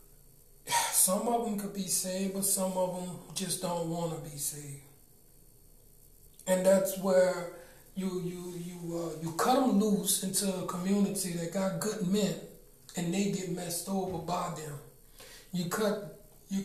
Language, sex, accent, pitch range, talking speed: English, male, American, 180-220 Hz, 160 wpm